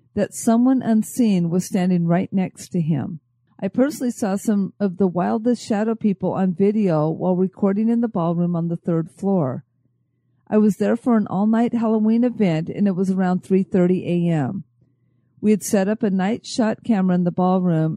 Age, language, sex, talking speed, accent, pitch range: 50-69, English, female, 180 wpm, American, 175-220 Hz